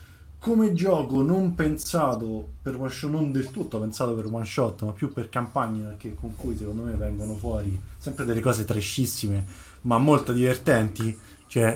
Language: Italian